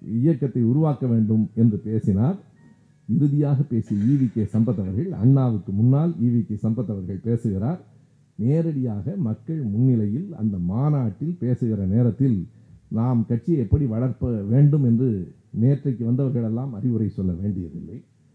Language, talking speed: Tamil, 110 wpm